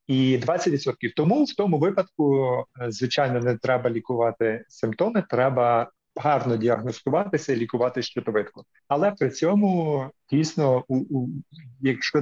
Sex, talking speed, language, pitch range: male, 120 wpm, Ukrainian, 120-145 Hz